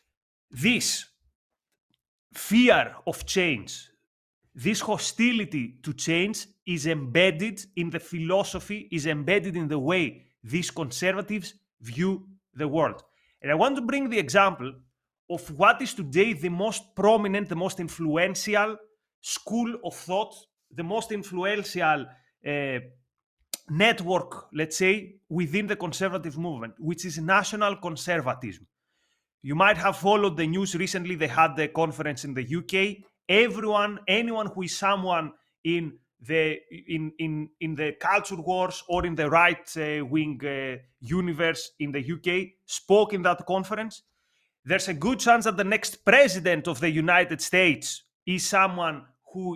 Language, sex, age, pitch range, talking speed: English, male, 30-49, 155-200 Hz, 140 wpm